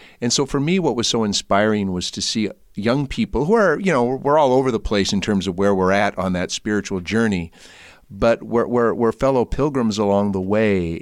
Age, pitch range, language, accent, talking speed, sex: 50-69, 90-115 Hz, English, American, 225 wpm, male